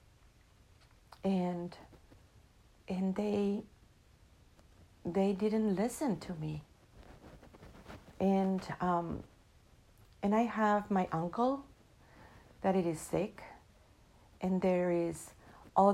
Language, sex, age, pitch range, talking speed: English, female, 50-69, 125-200 Hz, 85 wpm